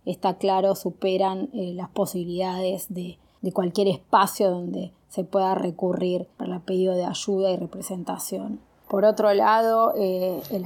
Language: Spanish